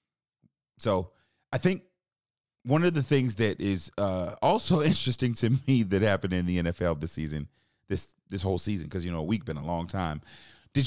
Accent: American